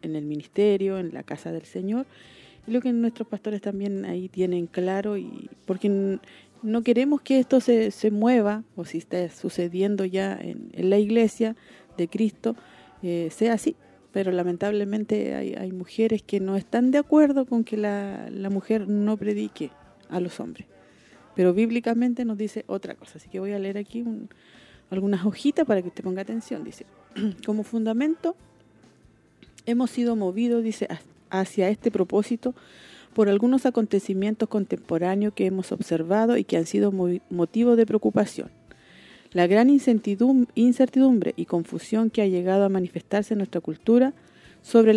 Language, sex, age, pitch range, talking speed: Spanish, female, 40-59, 190-235 Hz, 155 wpm